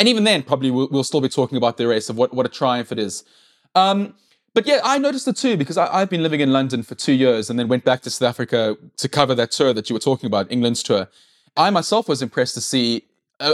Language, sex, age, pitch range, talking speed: English, male, 20-39, 125-155 Hz, 270 wpm